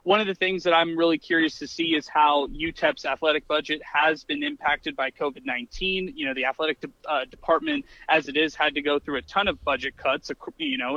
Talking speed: 220 wpm